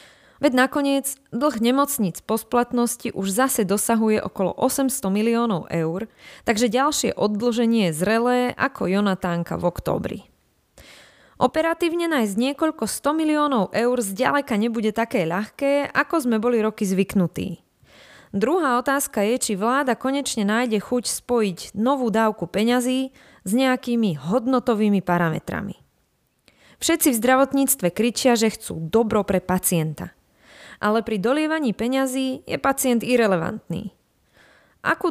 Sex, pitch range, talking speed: female, 200-260 Hz, 120 wpm